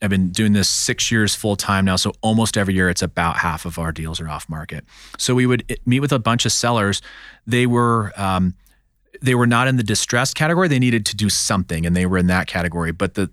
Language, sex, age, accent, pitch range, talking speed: English, male, 30-49, American, 90-115 Hz, 245 wpm